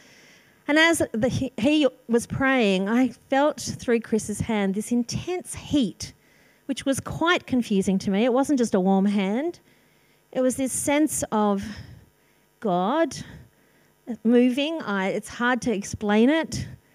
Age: 40-59